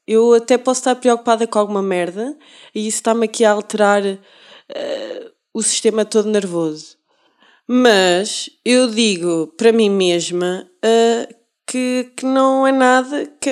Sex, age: female, 20-39